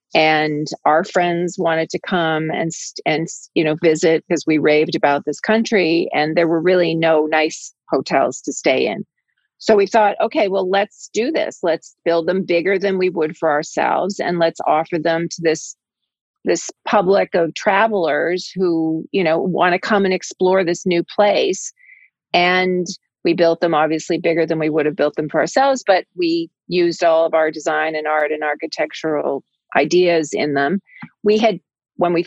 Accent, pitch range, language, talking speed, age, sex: American, 150-185 Hz, English, 180 wpm, 40-59, female